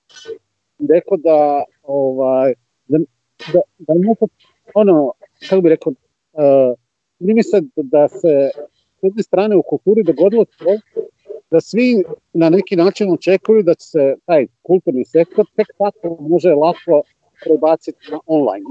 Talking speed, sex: 140 wpm, male